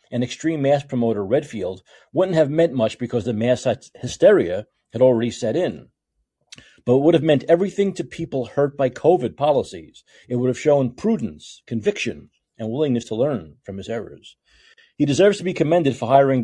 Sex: male